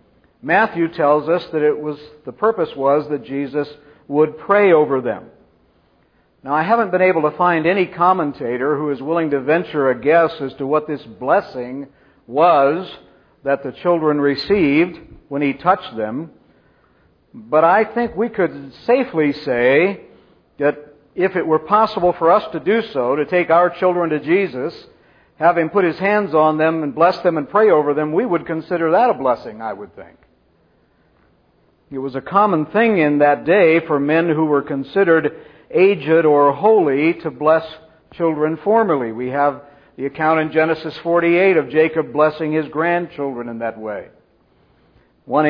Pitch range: 145-170 Hz